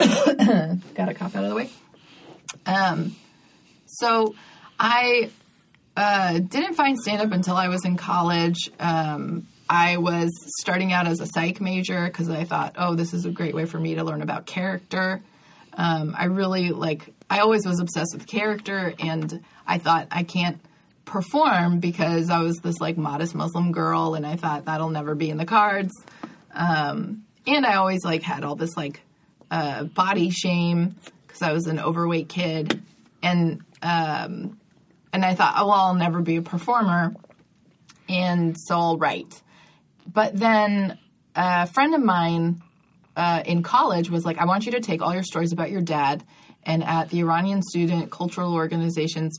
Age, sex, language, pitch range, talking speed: 20-39, female, English, 165-190 Hz, 170 wpm